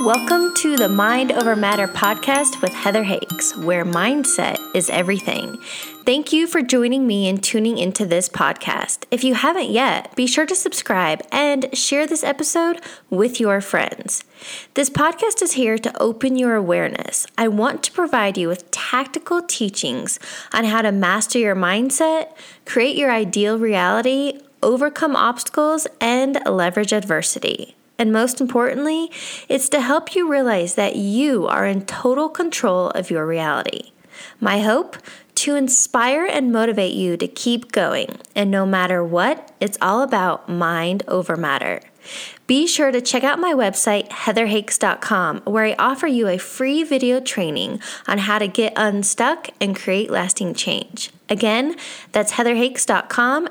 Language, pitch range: English, 205-280 Hz